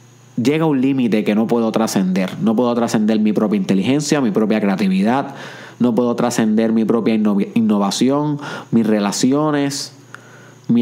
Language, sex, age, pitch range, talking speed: Spanish, male, 30-49, 120-190 Hz, 145 wpm